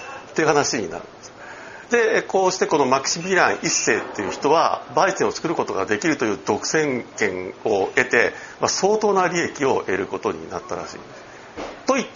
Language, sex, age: Japanese, male, 50-69